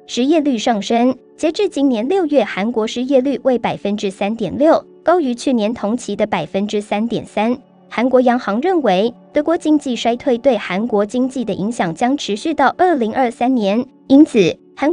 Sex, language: male, Chinese